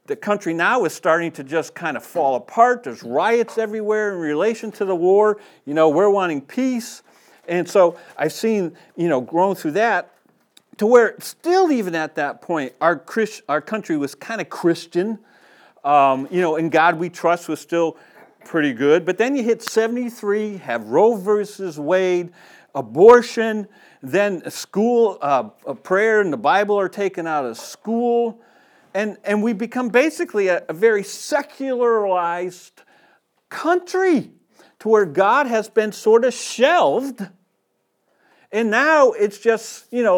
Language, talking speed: English, 160 wpm